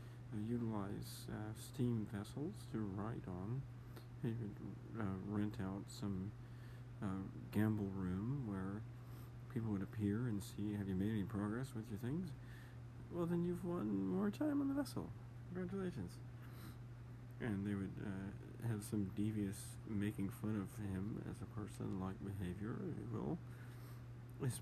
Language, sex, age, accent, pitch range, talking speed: English, male, 40-59, American, 100-120 Hz, 140 wpm